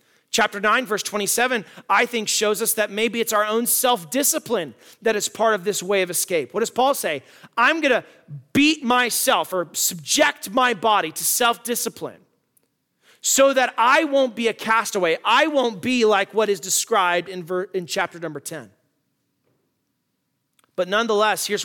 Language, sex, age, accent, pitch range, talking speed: English, male, 30-49, American, 170-230 Hz, 160 wpm